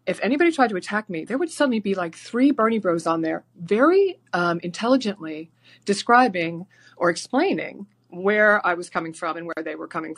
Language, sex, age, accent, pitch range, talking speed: English, female, 30-49, American, 165-215 Hz, 190 wpm